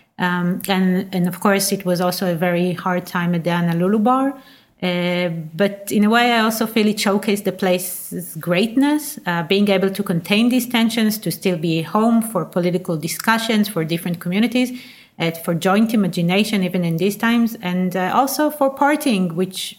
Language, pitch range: German, 180-225 Hz